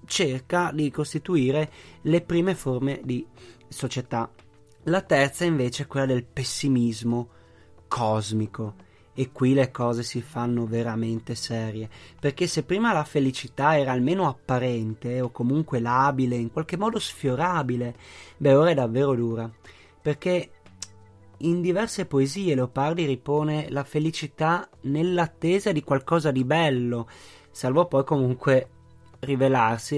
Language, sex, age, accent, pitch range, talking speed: Italian, male, 30-49, native, 120-155 Hz, 120 wpm